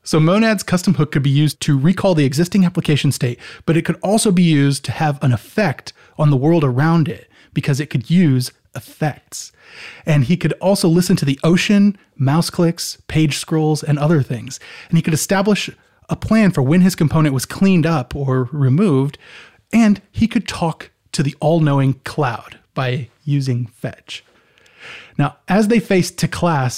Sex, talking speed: male, 175 wpm